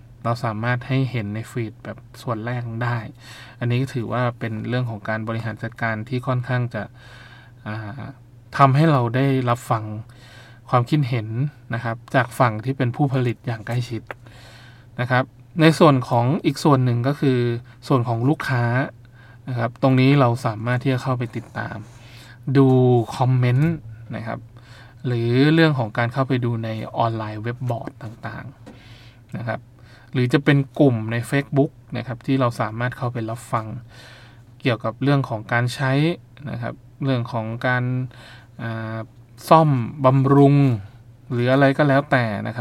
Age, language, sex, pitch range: 20-39, Thai, male, 115-130 Hz